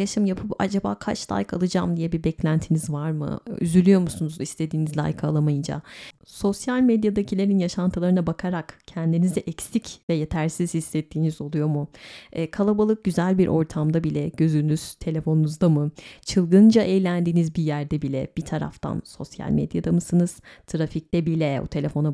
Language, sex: Turkish, female